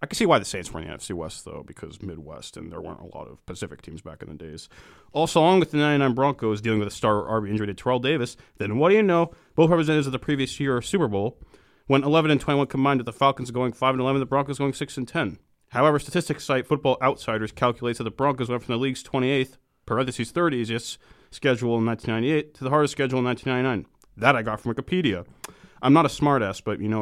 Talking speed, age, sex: 245 wpm, 30-49, male